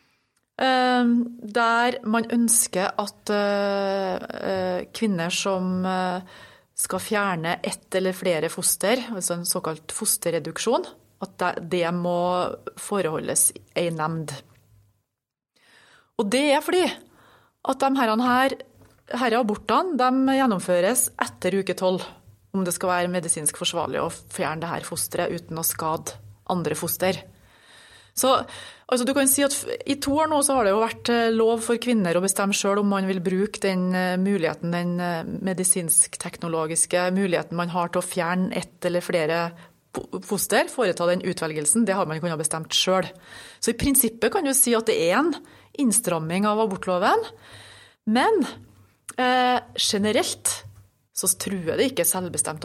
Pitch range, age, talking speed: 175-235 Hz, 30-49, 140 wpm